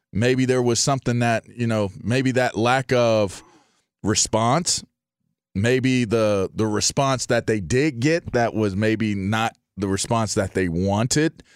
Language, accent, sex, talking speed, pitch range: English, American, male, 150 wpm, 100-125 Hz